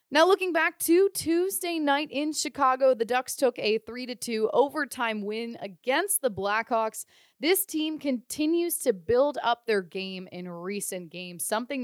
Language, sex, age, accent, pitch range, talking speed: English, female, 20-39, American, 205-280 Hz, 150 wpm